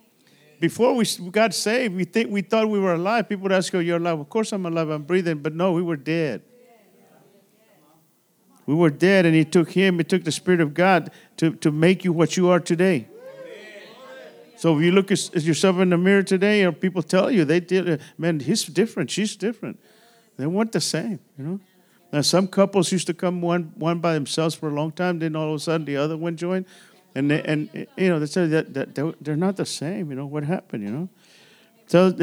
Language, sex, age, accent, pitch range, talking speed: English, male, 50-69, American, 160-195 Hz, 220 wpm